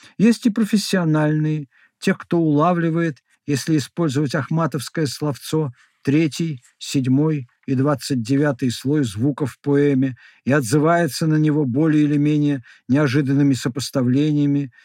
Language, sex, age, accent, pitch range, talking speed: Russian, male, 50-69, native, 130-160 Hz, 115 wpm